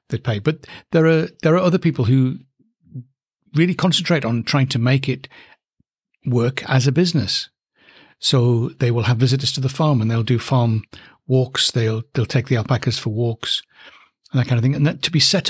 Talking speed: 195 wpm